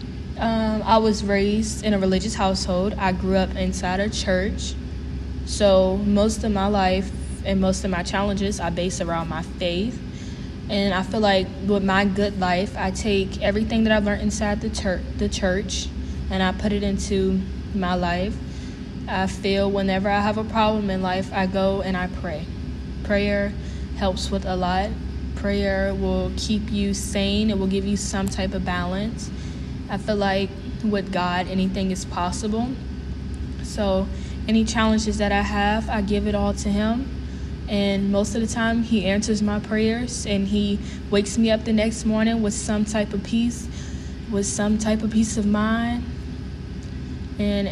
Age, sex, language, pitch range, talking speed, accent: 10-29, female, English, 190-210 Hz, 170 wpm, American